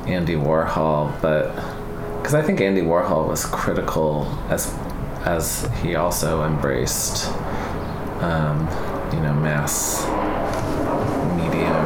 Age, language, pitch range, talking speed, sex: 30-49, English, 80-105 Hz, 100 wpm, male